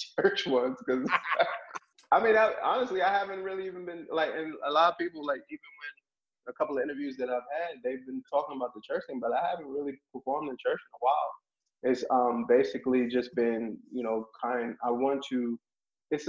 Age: 20-39